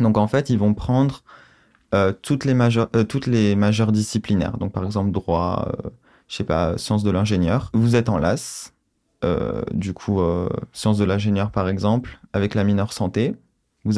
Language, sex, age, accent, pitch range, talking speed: French, male, 20-39, French, 100-110 Hz, 175 wpm